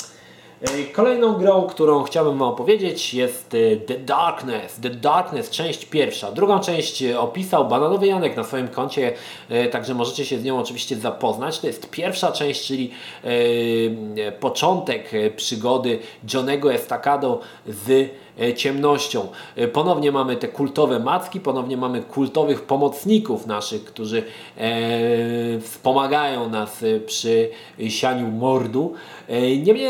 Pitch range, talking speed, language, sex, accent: 120-165 Hz, 110 wpm, Polish, male, native